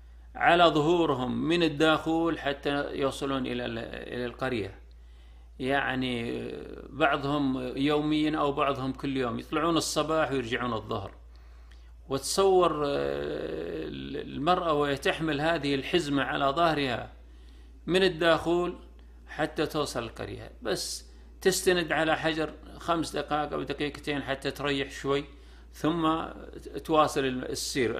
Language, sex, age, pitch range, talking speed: Arabic, male, 40-59, 115-150 Hz, 95 wpm